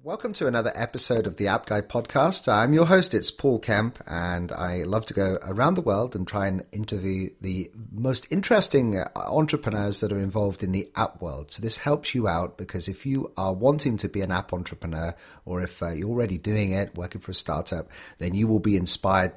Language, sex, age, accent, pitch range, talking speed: English, male, 40-59, British, 90-110 Hz, 215 wpm